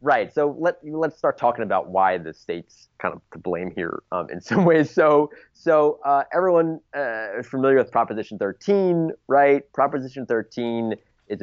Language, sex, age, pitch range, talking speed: English, male, 30-49, 110-155 Hz, 175 wpm